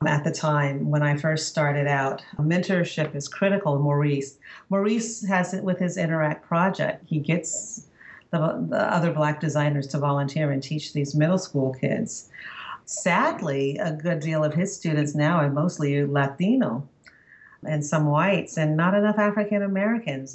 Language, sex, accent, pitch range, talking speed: English, female, American, 145-170 Hz, 155 wpm